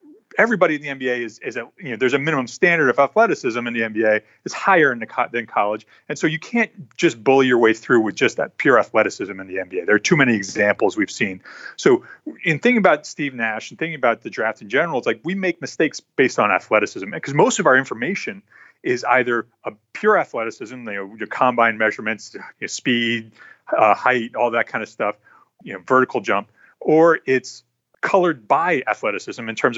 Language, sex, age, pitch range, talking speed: English, male, 30-49, 115-155 Hz, 210 wpm